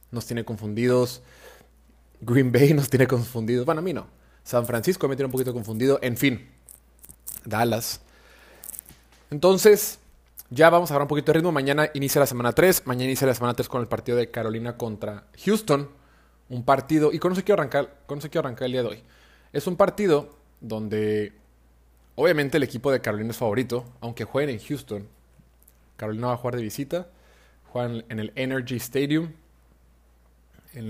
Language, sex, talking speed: Spanish, male, 170 wpm